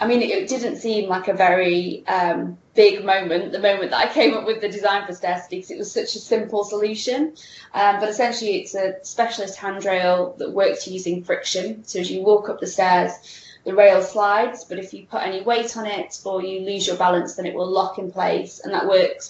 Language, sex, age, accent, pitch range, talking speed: English, female, 20-39, British, 190-225 Hz, 225 wpm